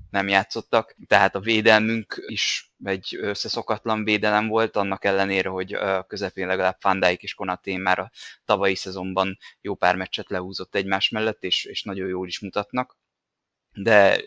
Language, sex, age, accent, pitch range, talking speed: English, male, 20-39, Finnish, 95-110 Hz, 150 wpm